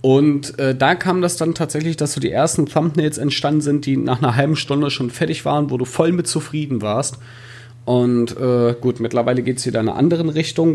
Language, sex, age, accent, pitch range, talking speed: German, male, 30-49, German, 115-135 Hz, 220 wpm